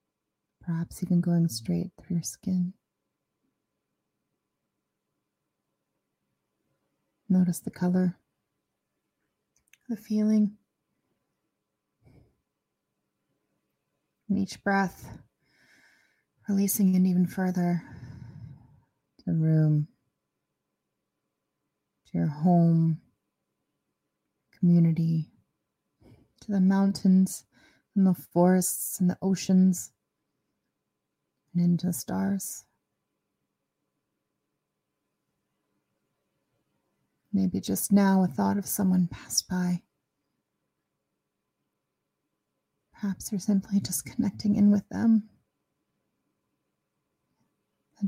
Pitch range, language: 130-195 Hz, English